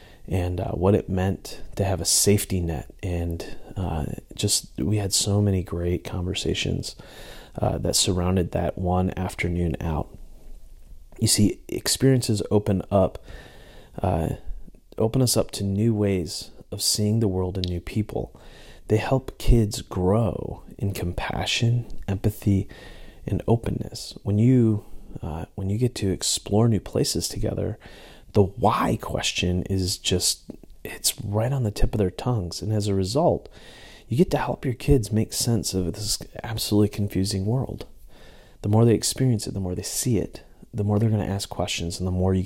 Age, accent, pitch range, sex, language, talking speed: 30-49, American, 90-110 Hz, male, English, 165 wpm